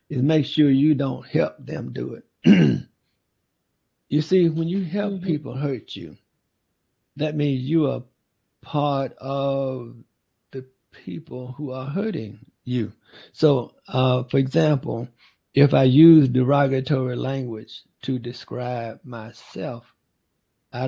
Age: 60-79